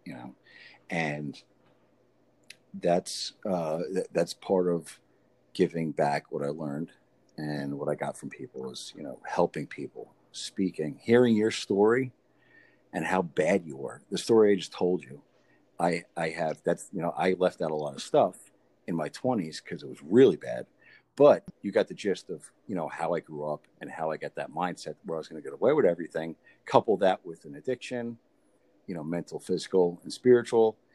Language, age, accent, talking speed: English, 50-69, American, 190 wpm